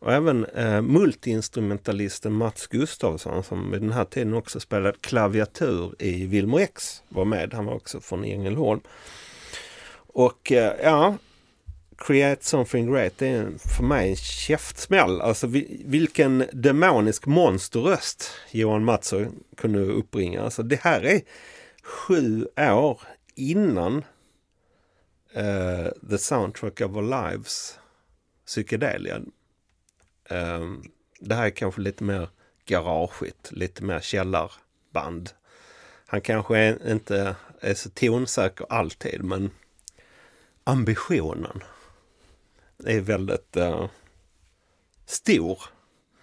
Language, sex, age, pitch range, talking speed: Swedish, male, 40-59, 90-115 Hz, 105 wpm